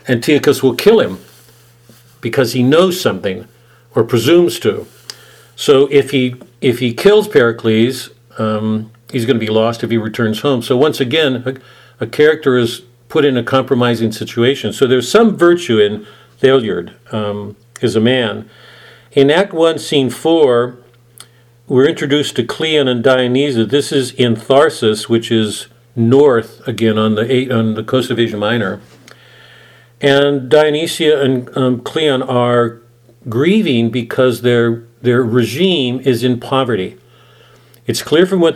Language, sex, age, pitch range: English, male, 50-69, 115-135 Hz